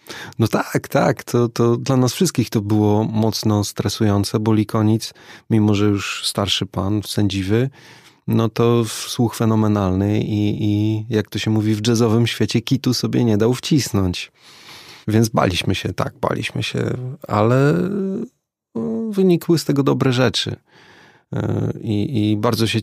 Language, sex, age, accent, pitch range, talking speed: Polish, male, 30-49, native, 105-125 Hz, 140 wpm